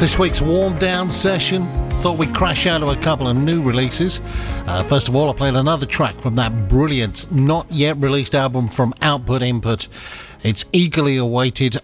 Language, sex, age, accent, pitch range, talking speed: English, male, 50-69, British, 110-145 Hz, 165 wpm